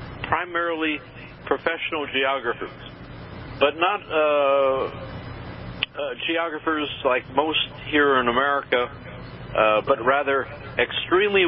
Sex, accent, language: male, American, English